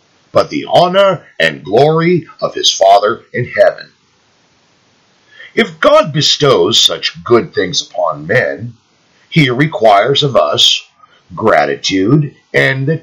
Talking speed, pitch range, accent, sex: 115 wpm, 120-180 Hz, American, male